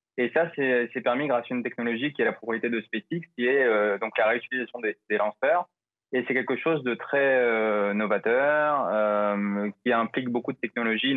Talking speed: 205 wpm